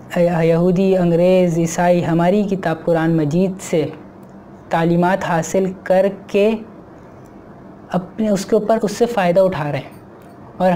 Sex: female